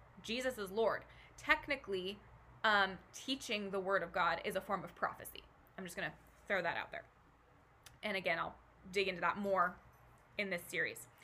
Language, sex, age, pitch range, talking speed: English, female, 20-39, 200-260 Hz, 175 wpm